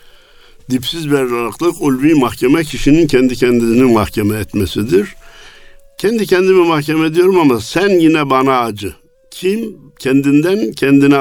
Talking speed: 110 wpm